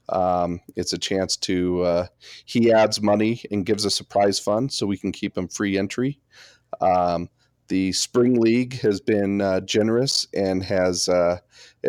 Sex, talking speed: male, 160 wpm